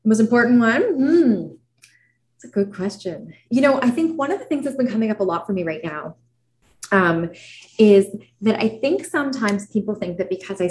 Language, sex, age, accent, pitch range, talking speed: English, female, 20-39, American, 175-230 Hz, 205 wpm